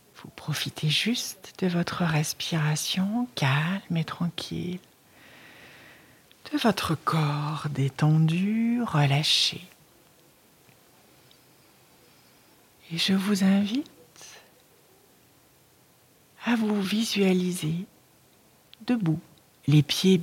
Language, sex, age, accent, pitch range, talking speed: French, female, 60-79, French, 155-205 Hz, 70 wpm